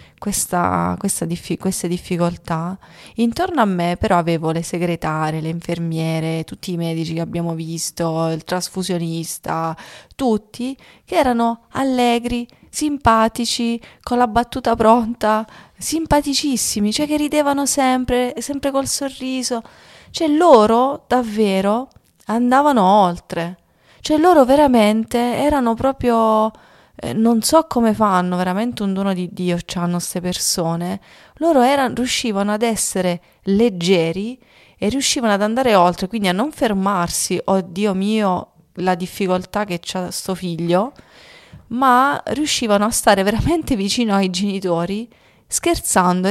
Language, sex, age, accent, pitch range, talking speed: Italian, female, 30-49, native, 170-235 Hz, 120 wpm